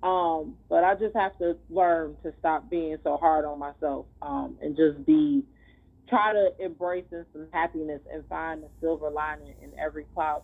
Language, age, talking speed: English, 30-49, 185 wpm